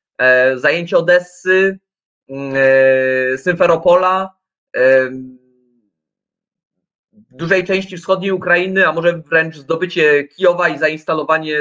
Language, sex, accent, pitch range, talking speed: Polish, male, native, 140-180 Hz, 70 wpm